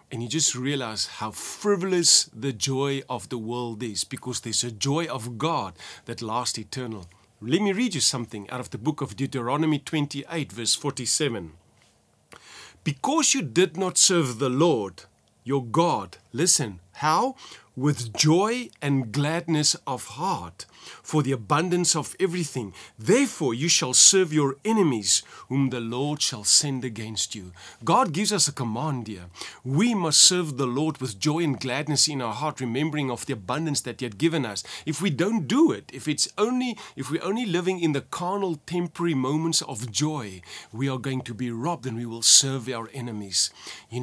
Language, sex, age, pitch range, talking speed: English, male, 40-59, 120-165 Hz, 175 wpm